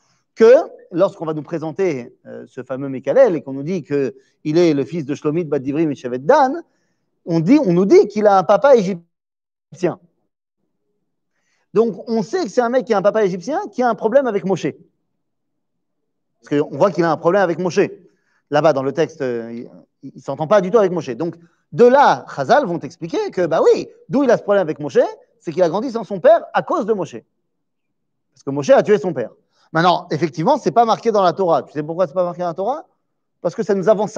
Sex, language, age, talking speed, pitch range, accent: male, French, 40-59, 230 wpm, 155-225 Hz, French